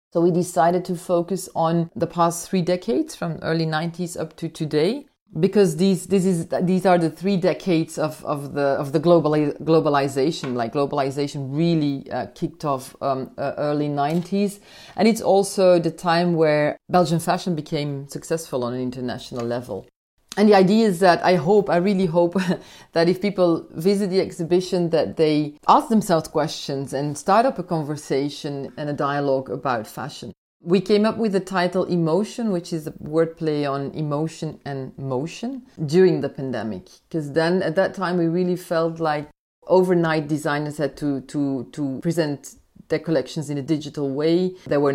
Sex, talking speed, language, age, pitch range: female, 170 wpm, English, 30-49, 150-180 Hz